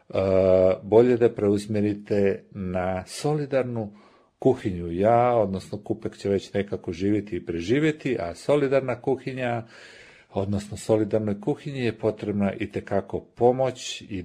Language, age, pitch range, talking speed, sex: English, 50-69, 95-120 Hz, 115 wpm, male